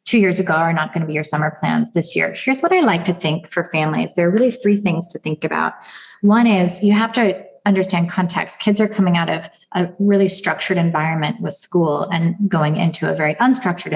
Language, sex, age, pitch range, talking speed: English, female, 20-39, 170-205 Hz, 230 wpm